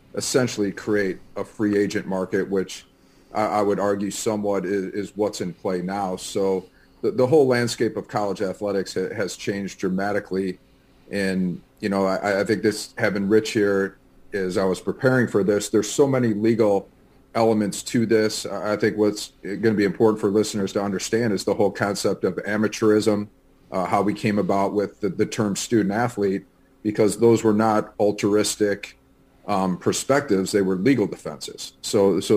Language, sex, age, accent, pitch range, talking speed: English, male, 40-59, American, 95-105 Hz, 165 wpm